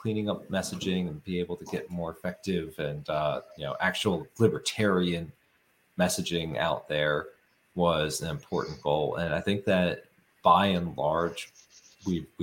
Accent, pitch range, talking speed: American, 80-100 Hz, 150 wpm